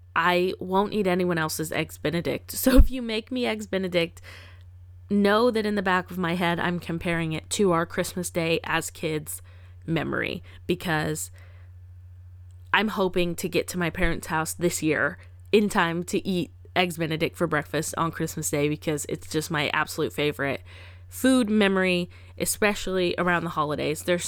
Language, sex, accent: English, female, American